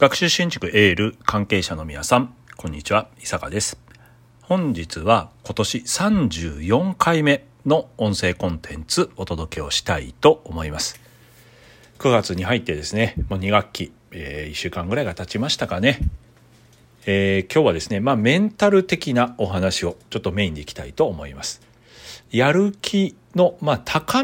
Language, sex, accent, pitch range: Japanese, male, native, 95-140 Hz